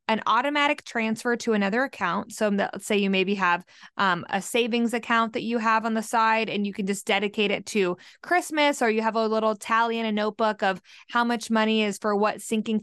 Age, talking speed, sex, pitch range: 20-39, 220 wpm, female, 210-255 Hz